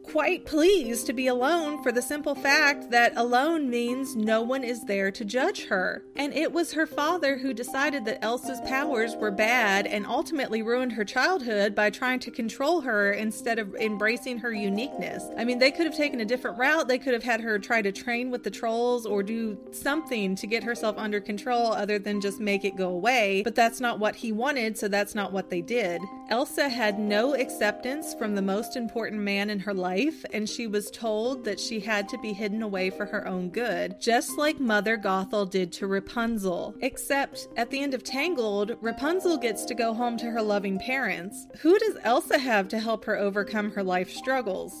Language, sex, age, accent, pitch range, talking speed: English, female, 40-59, American, 210-265 Hz, 205 wpm